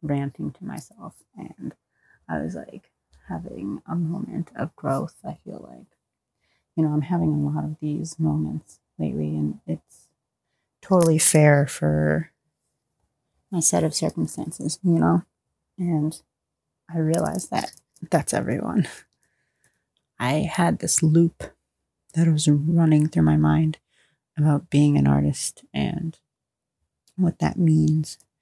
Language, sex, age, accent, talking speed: English, female, 30-49, American, 125 wpm